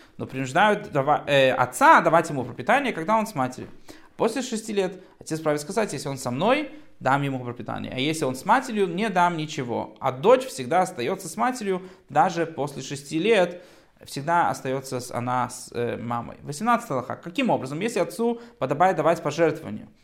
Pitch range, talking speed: 140-200 Hz, 170 wpm